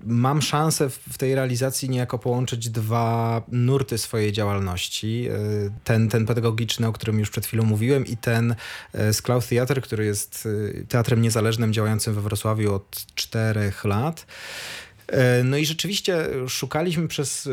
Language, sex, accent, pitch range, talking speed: Polish, male, native, 110-130 Hz, 135 wpm